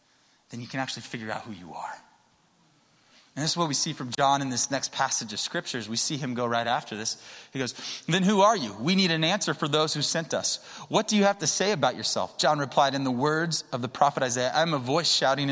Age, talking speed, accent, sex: 20-39, 255 wpm, American, male